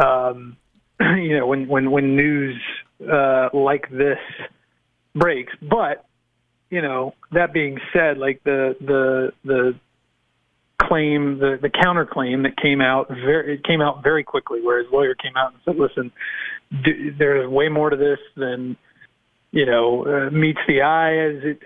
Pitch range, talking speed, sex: 130-155 Hz, 155 wpm, male